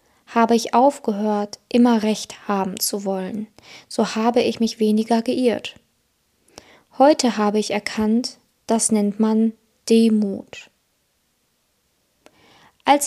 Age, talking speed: 20-39, 105 wpm